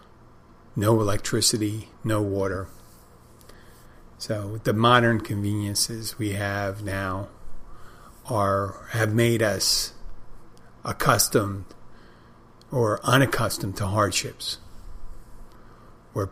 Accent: American